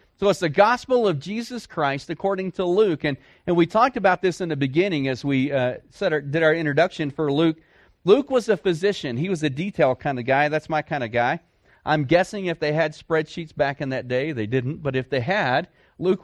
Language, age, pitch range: English, 40-59, 125-165 Hz